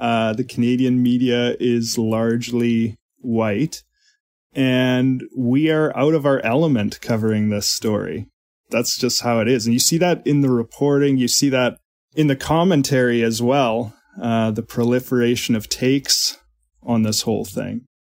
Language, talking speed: English, 155 wpm